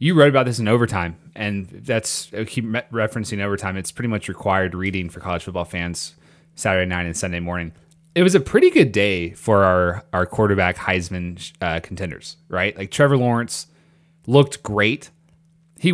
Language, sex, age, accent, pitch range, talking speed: English, male, 30-49, American, 95-145 Hz, 170 wpm